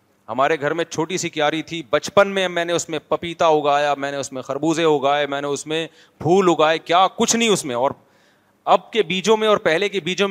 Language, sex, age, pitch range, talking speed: Urdu, male, 30-49, 150-205 Hz, 240 wpm